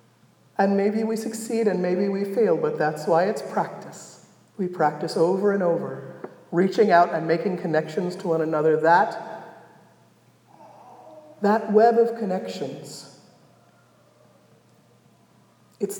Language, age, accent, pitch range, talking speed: English, 40-59, American, 165-225 Hz, 120 wpm